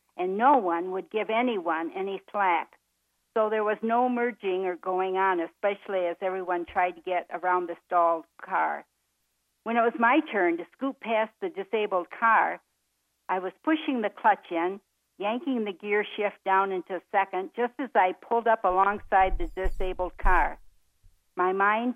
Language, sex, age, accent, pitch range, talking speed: English, female, 60-79, American, 175-210 Hz, 170 wpm